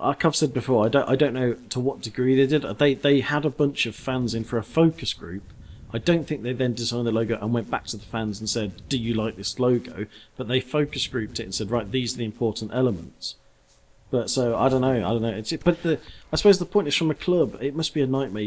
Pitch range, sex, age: 115-150 Hz, male, 40-59